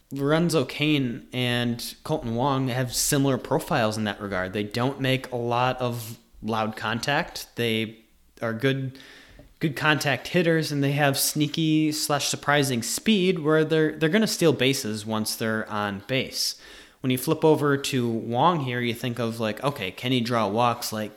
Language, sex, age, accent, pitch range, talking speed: English, male, 30-49, American, 115-145 Hz, 165 wpm